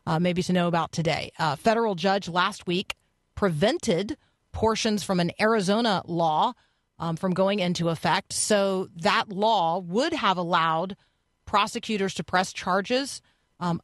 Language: English